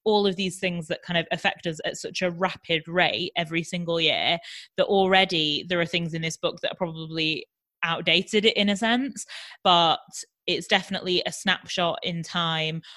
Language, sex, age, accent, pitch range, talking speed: English, female, 20-39, British, 160-185 Hz, 180 wpm